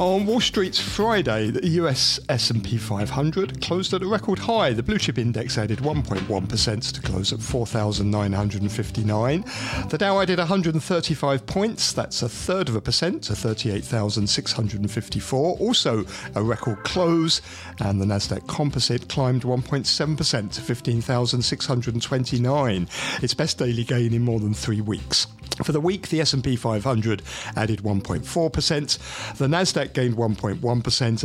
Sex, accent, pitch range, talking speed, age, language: male, British, 110-155 Hz, 130 wpm, 50-69, English